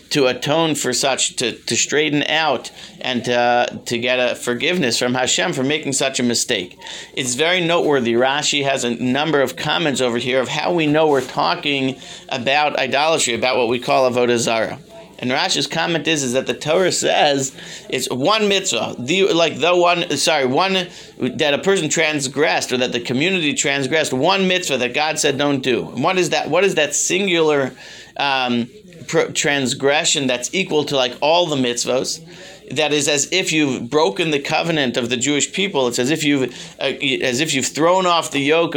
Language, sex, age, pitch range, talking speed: English, male, 40-59, 125-160 Hz, 190 wpm